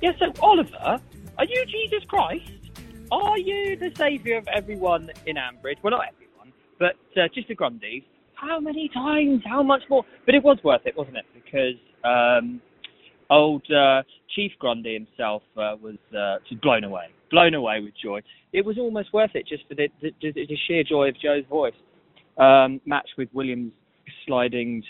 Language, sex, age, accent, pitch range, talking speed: English, male, 20-39, British, 115-185 Hz, 180 wpm